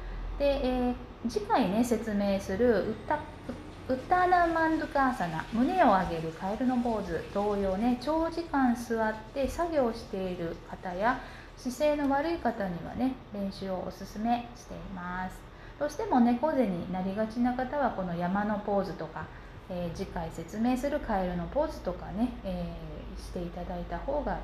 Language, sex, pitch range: Japanese, female, 185-275 Hz